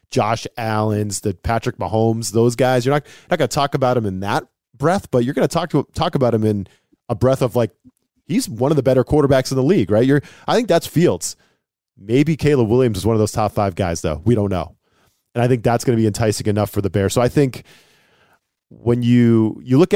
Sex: male